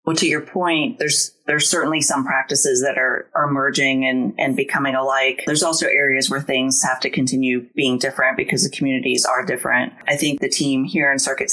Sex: female